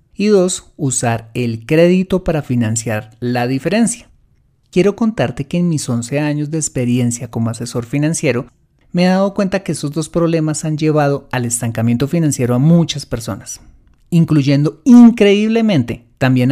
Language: Spanish